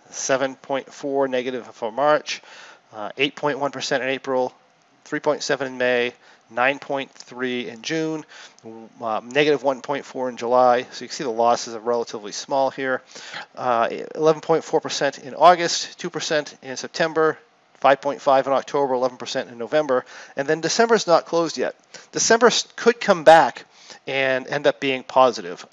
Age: 40-59